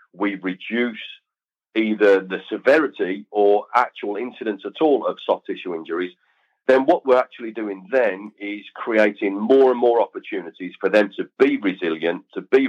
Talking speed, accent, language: 155 wpm, British, English